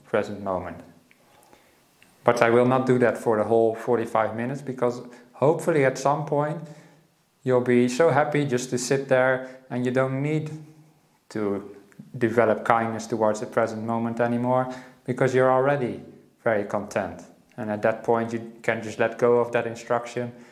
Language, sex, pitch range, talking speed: English, male, 110-125 Hz, 160 wpm